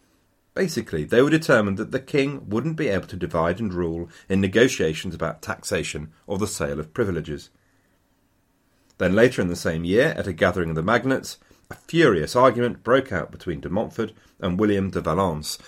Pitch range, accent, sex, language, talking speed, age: 90-120 Hz, British, male, English, 180 wpm, 40-59